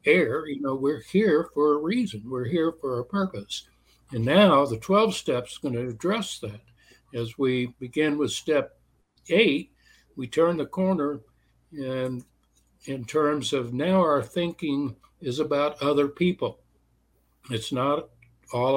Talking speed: 145 wpm